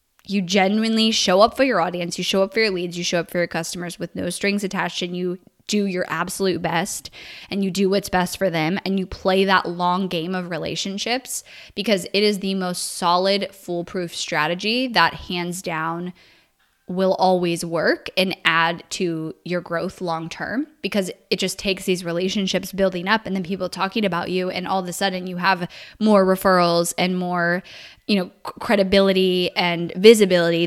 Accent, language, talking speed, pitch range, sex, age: American, English, 185 wpm, 175-200 Hz, female, 10-29